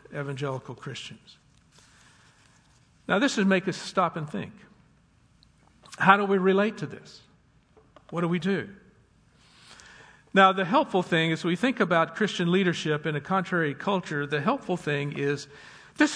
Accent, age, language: American, 60-79, English